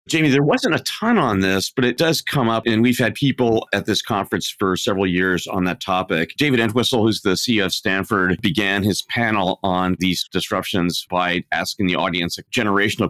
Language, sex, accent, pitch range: English, male, American, 90-110 Hz